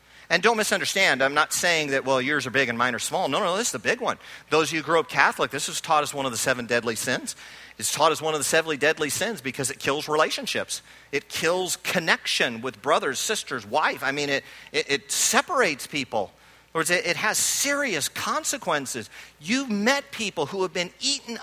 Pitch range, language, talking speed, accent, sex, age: 130-190 Hz, English, 230 wpm, American, male, 50-69